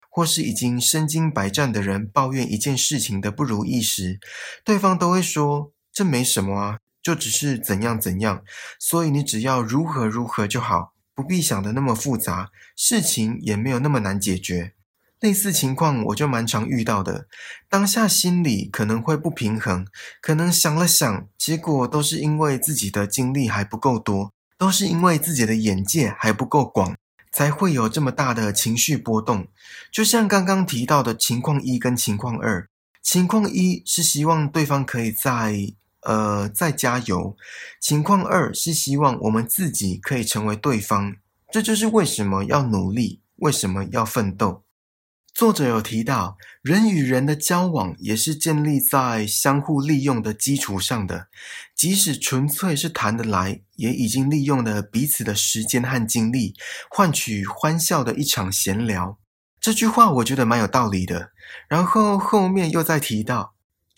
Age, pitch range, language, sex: 20-39, 105-155 Hz, Chinese, male